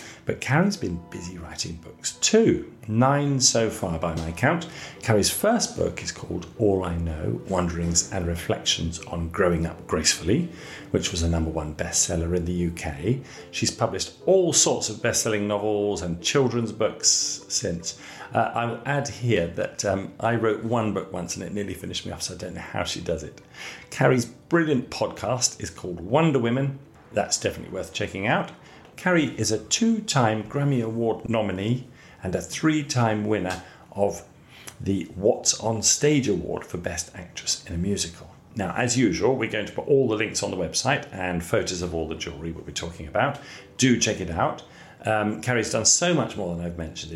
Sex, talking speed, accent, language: male, 185 wpm, British, English